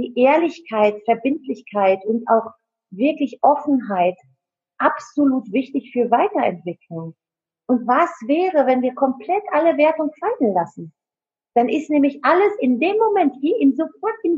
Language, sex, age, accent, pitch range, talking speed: German, female, 40-59, German, 200-275 Hz, 130 wpm